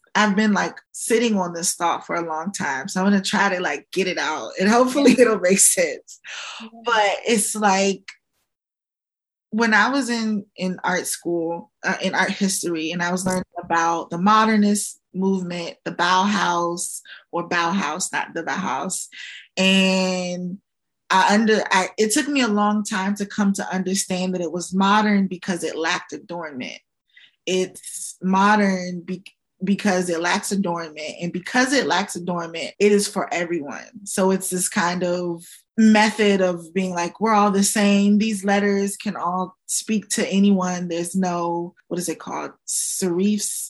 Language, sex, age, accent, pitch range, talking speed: English, female, 20-39, American, 180-205 Hz, 165 wpm